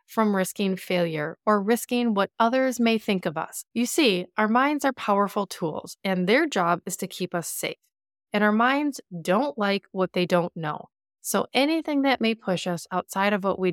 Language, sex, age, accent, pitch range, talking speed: English, female, 30-49, American, 175-235 Hz, 195 wpm